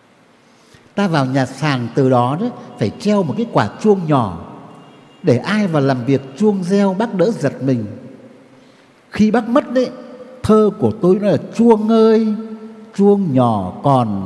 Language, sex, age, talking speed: Vietnamese, male, 60-79, 165 wpm